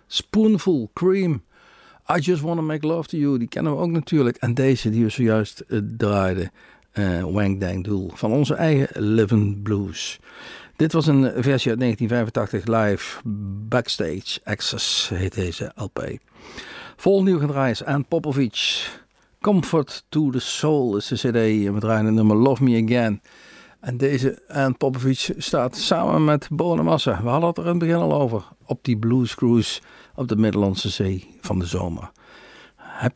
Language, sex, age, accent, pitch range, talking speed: Dutch, male, 50-69, Dutch, 105-150 Hz, 160 wpm